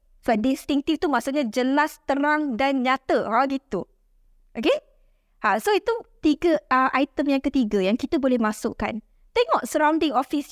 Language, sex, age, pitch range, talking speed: Malay, female, 20-39, 235-310 Hz, 150 wpm